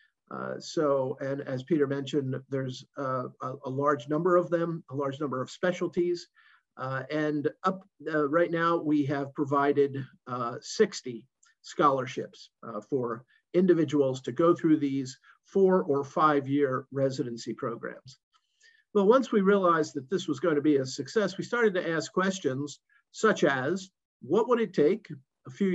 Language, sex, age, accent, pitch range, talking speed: English, male, 50-69, American, 140-180 Hz, 160 wpm